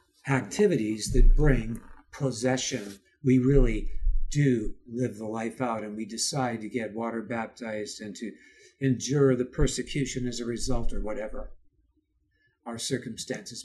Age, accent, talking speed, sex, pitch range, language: 60-79, American, 130 wpm, male, 120-170 Hz, English